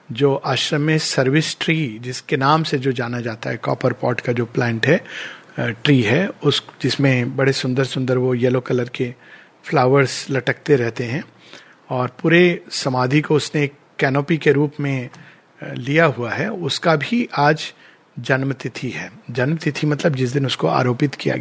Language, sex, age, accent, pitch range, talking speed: Hindi, male, 50-69, native, 135-175 Hz, 160 wpm